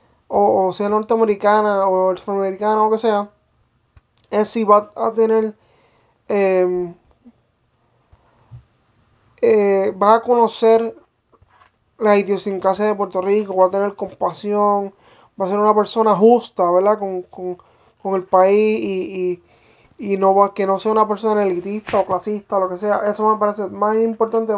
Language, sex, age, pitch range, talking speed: English, male, 20-39, 190-220 Hz, 150 wpm